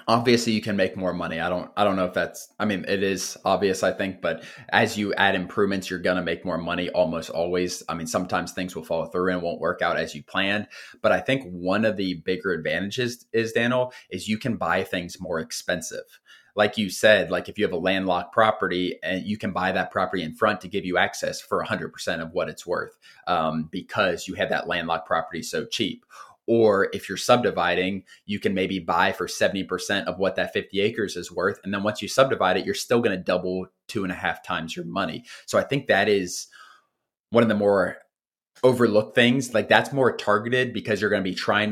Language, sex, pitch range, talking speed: English, male, 90-105 Hz, 225 wpm